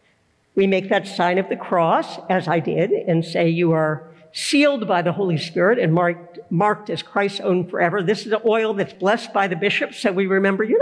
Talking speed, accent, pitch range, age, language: 215 wpm, American, 165-225 Hz, 60-79, English